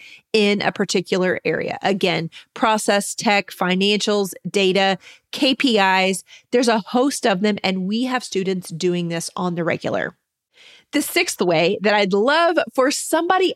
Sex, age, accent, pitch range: female, 30-49, American, 195-250 Hz